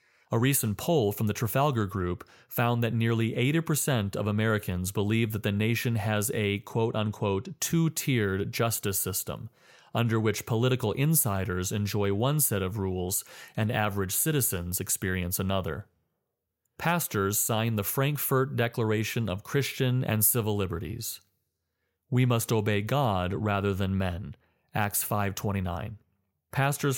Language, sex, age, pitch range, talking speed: English, male, 30-49, 100-125 Hz, 125 wpm